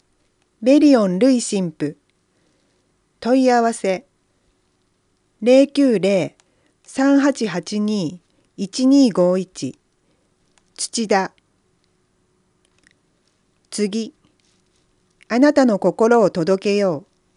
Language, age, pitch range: Japanese, 40-59, 180-265 Hz